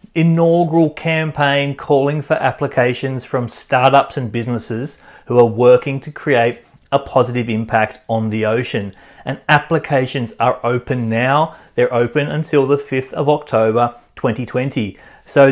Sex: male